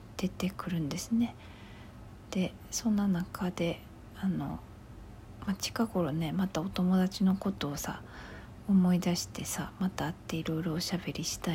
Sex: female